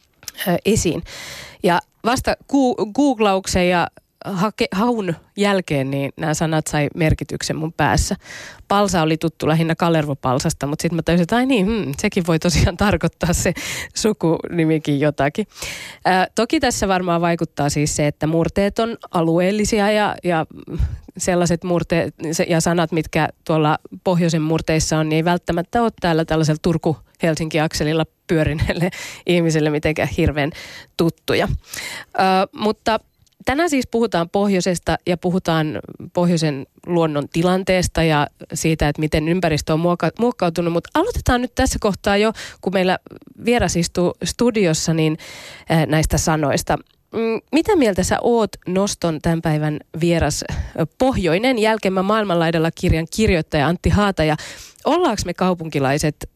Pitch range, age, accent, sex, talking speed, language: 155-200 Hz, 20-39, native, female, 130 wpm, Finnish